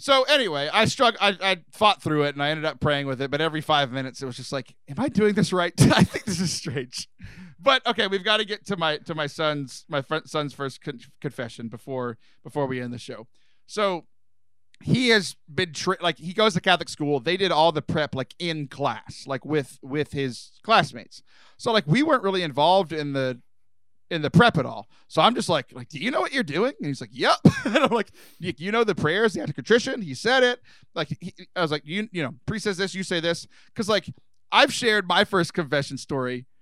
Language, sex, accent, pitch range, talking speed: English, male, American, 140-190 Hz, 235 wpm